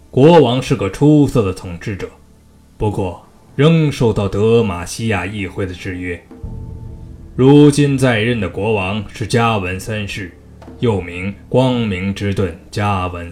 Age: 20-39